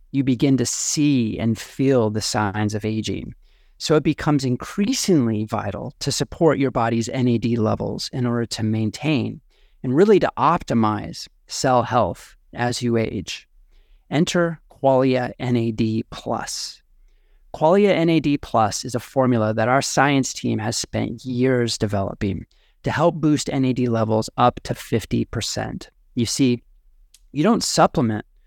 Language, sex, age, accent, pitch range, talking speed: English, male, 30-49, American, 110-140 Hz, 135 wpm